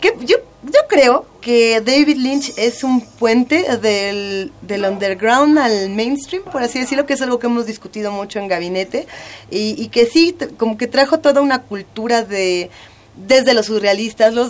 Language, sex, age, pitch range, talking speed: Spanish, female, 30-49, 200-255 Hz, 170 wpm